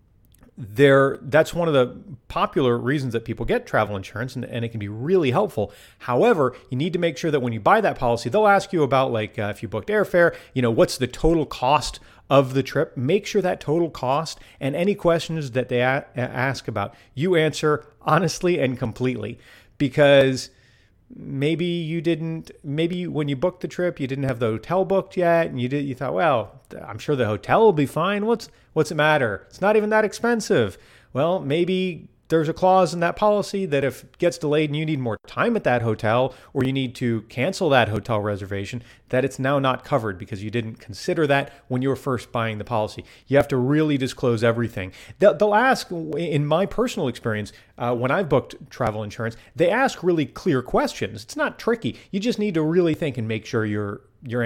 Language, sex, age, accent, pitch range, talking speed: English, male, 40-59, American, 115-165 Hz, 210 wpm